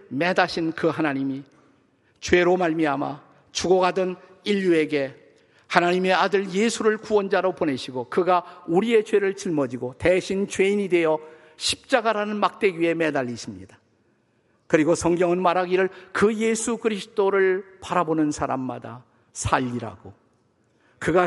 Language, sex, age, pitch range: Korean, male, 50-69, 140-195 Hz